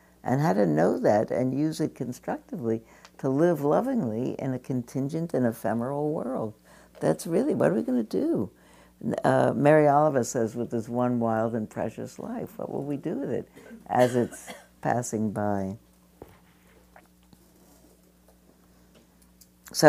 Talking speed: 145 wpm